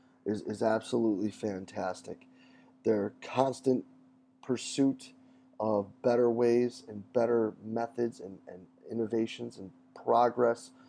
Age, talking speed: 30-49, 100 wpm